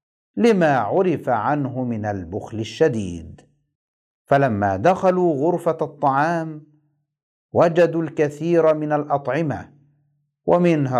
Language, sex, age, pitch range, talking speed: Arabic, male, 50-69, 125-160 Hz, 80 wpm